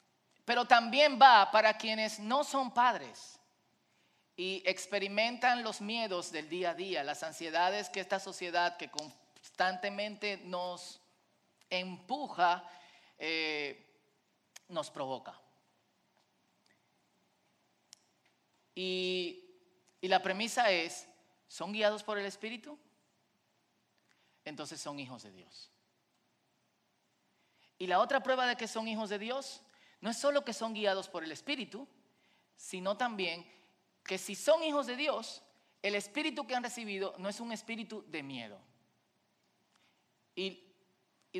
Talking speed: 120 wpm